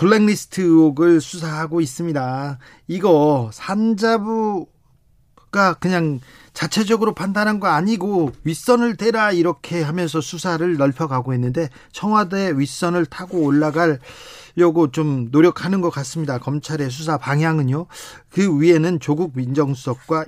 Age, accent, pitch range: 40-59, native, 140-175 Hz